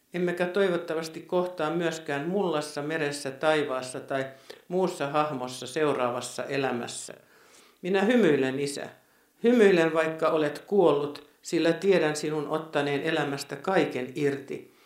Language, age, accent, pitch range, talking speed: Finnish, 60-79, native, 140-180 Hz, 105 wpm